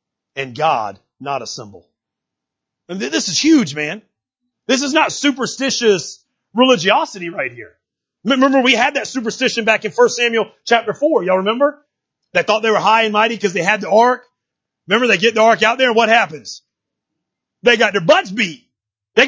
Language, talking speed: English, 185 wpm